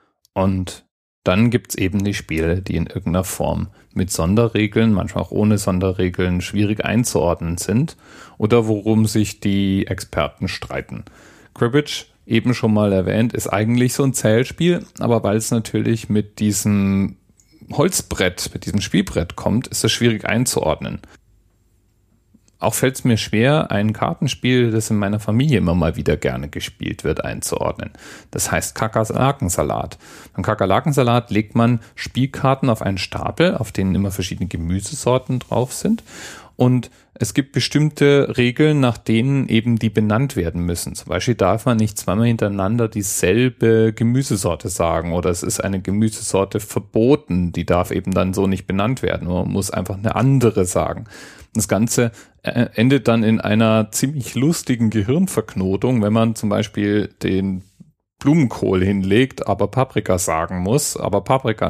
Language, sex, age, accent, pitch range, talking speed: German, male, 40-59, German, 95-120 Hz, 150 wpm